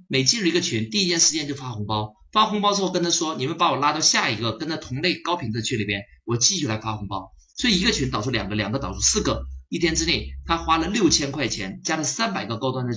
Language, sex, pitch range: Chinese, male, 110-180 Hz